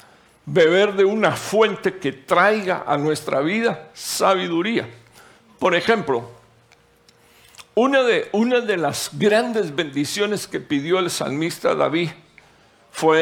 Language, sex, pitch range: Spanish, male, 140-195 Hz